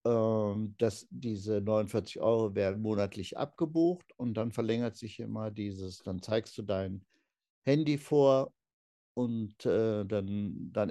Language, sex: German, male